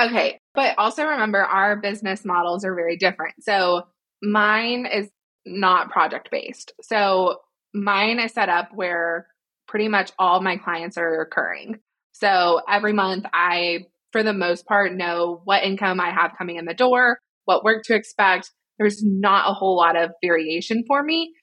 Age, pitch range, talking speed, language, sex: 20-39, 175-215 Hz, 165 wpm, English, female